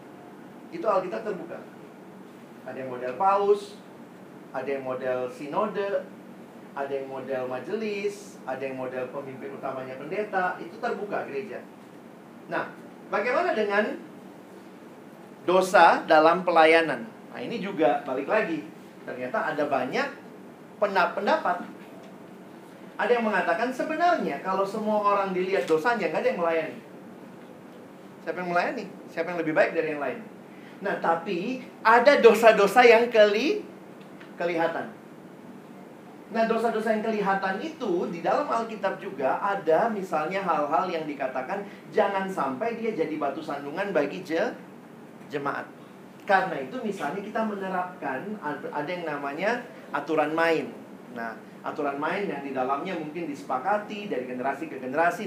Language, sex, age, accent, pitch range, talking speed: Indonesian, male, 40-59, native, 155-215 Hz, 125 wpm